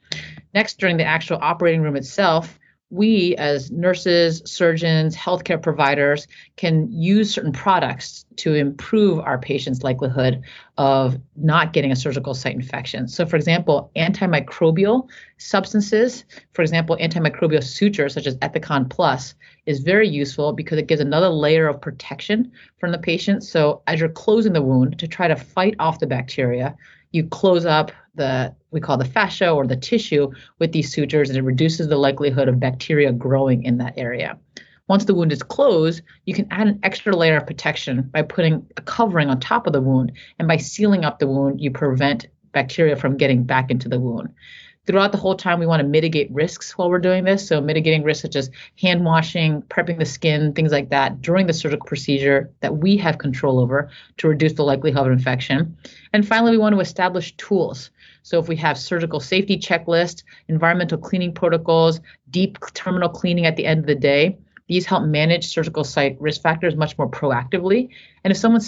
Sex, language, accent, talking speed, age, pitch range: female, English, American, 185 wpm, 30-49, 140-180 Hz